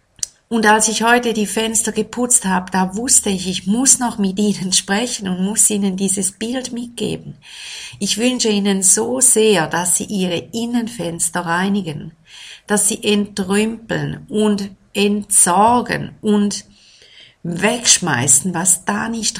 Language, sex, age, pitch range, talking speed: German, female, 50-69, 185-220 Hz, 135 wpm